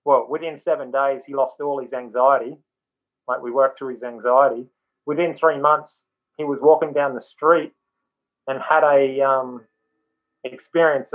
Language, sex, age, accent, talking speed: English, male, 30-49, Australian, 155 wpm